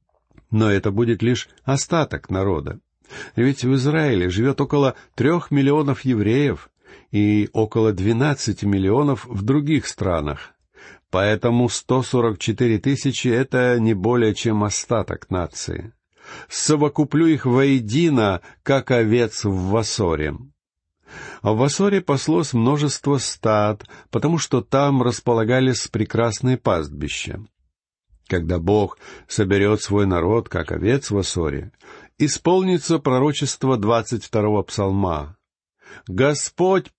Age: 50-69